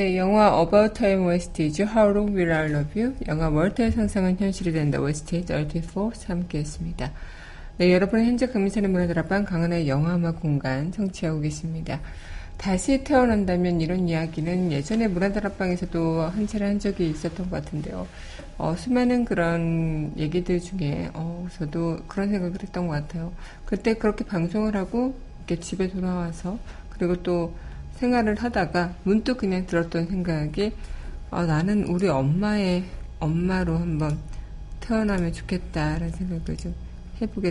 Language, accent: Korean, native